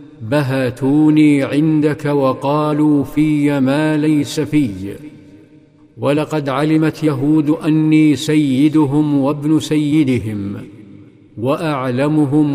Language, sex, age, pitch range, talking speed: Arabic, male, 50-69, 140-155 Hz, 70 wpm